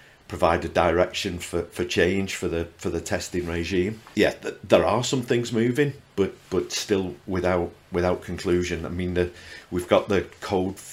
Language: English